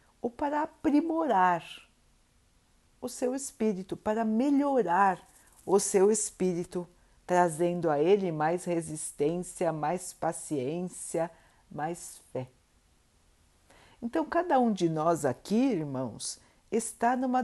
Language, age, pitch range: Portuguese, 50-69, 155-225 Hz